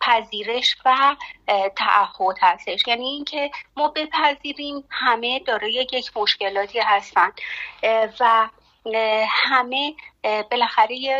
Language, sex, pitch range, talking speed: Persian, female, 220-285 Hz, 85 wpm